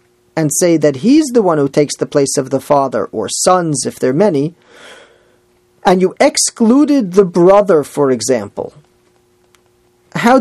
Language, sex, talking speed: English, male, 155 wpm